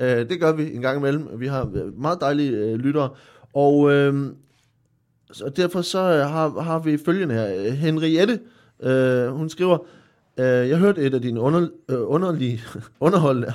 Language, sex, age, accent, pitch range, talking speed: Danish, male, 20-39, native, 125-170 Hz, 160 wpm